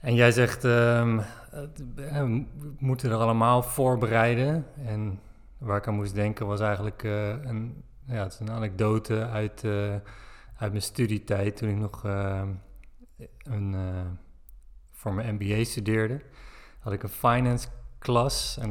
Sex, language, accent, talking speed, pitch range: male, Dutch, Dutch, 145 wpm, 100-120 Hz